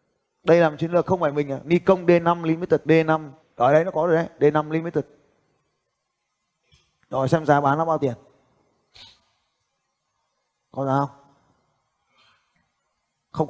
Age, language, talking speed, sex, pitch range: 20-39, Vietnamese, 140 wpm, male, 155-215 Hz